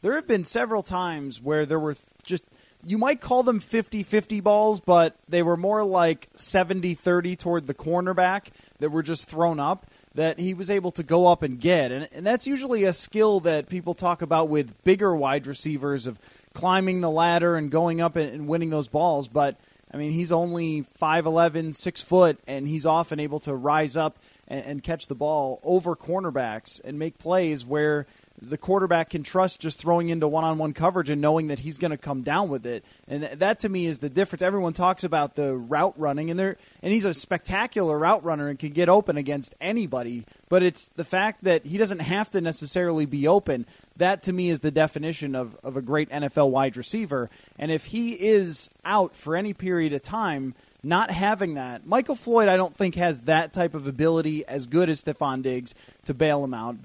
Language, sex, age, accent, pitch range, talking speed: English, male, 30-49, American, 145-185 Hz, 205 wpm